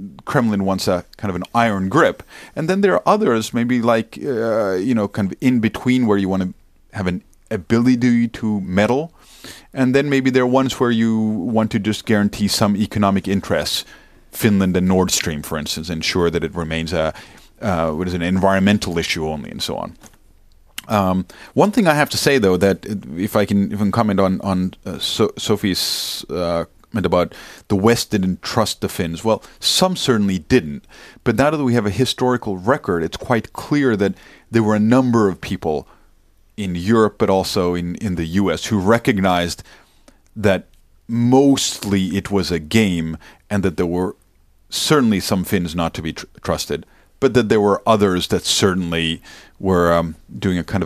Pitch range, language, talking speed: 90-115 Hz, Finnish, 185 wpm